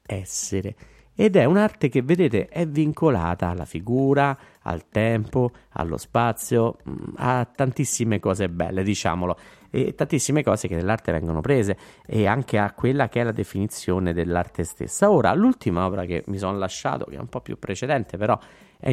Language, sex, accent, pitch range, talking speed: Italian, male, native, 95-130 Hz, 160 wpm